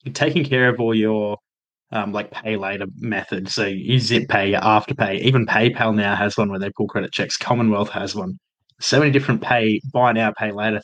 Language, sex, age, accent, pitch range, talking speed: English, male, 20-39, Australian, 105-125 Hz, 210 wpm